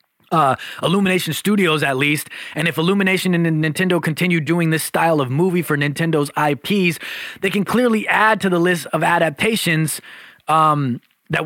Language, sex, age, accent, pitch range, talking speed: English, male, 30-49, American, 150-190 Hz, 155 wpm